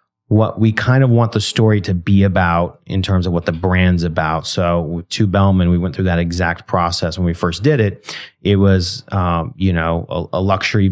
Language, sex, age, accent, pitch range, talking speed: English, male, 30-49, American, 90-105 Hz, 215 wpm